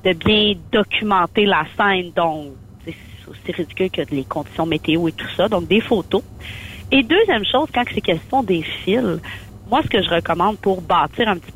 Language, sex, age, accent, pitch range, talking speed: French, female, 40-59, Canadian, 165-230 Hz, 185 wpm